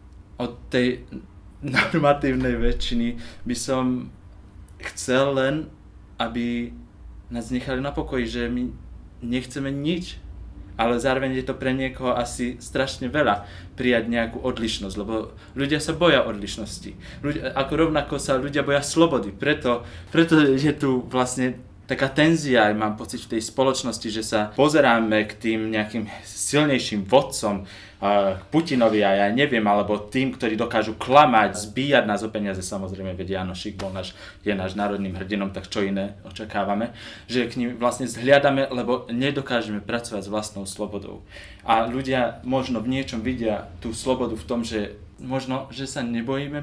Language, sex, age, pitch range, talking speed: Slovak, male, 20-39, 100-130 Hz, 150 wpm